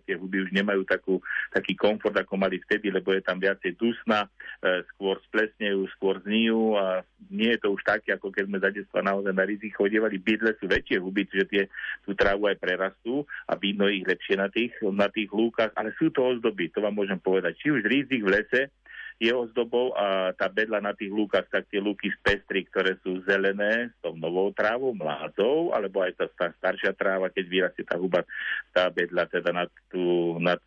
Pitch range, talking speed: 95-105 Hz, 200 wpm